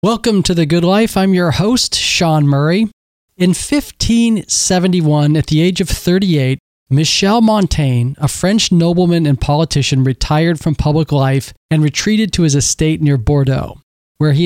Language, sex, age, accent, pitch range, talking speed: English, male, 40-59, American, 145-180 Hz, 155 wpm